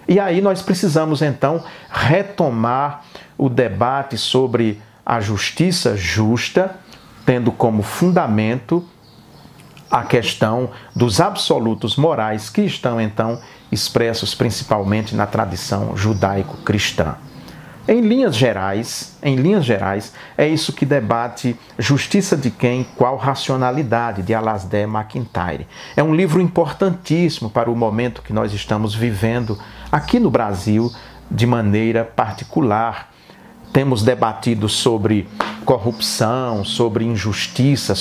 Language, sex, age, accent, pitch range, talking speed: Portuguese, male, 50-69, Brazilian, 110-140 Hz, 105 wpm